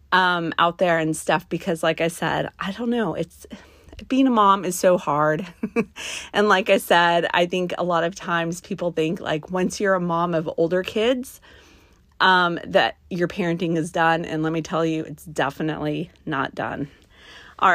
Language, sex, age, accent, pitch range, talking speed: English, female, 30-49, American, 165-210 Hz, 185 wpm